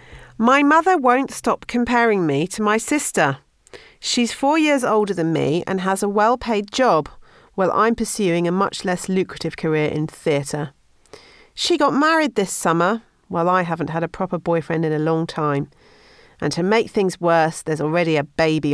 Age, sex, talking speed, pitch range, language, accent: 40-59, female, 175 wpm, 155-230 Hz, English, British